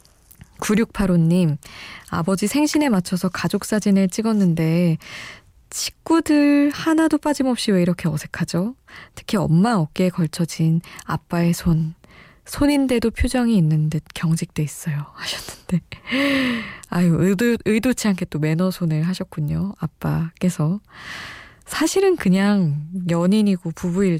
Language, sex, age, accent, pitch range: Korean, female, 20-39, native, 165-220 Hz